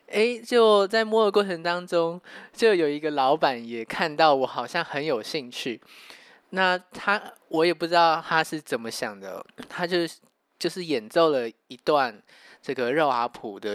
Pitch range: 130-185 Hz